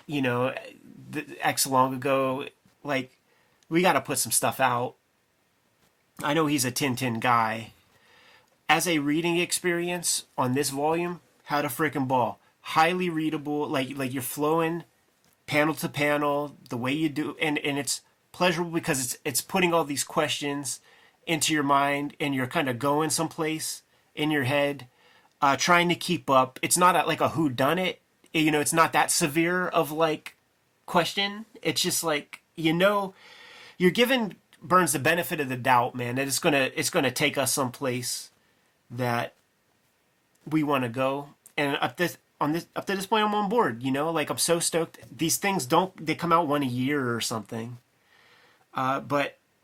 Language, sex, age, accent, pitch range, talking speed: English, male, 30-49, American, 135-170 Hz, 175 wpm